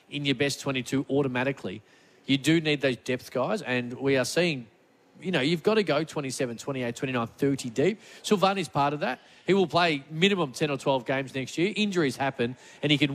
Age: 40-59